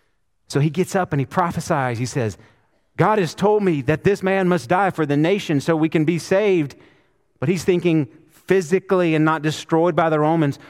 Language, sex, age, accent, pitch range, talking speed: English, male, 40-59, American, 115-165 Hz, 200 wpm